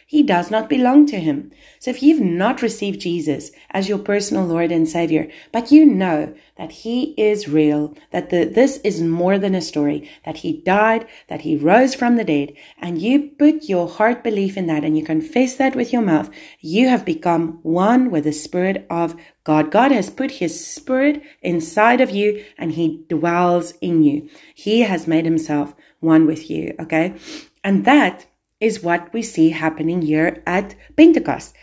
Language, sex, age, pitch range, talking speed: English, female, 30-49, 165-260 Hz, 185 wpm